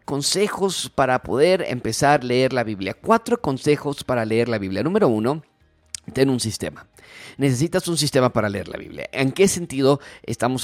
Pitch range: 115-150 Hz